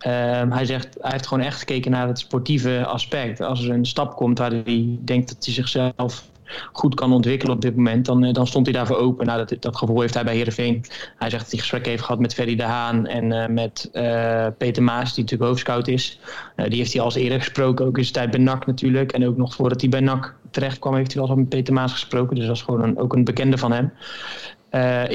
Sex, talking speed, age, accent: male, 250 wpm, 20-39, Dutch